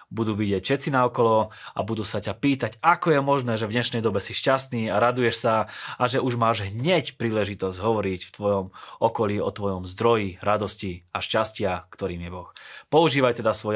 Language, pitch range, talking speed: Slovak, 100-125 Hz, 190 wpm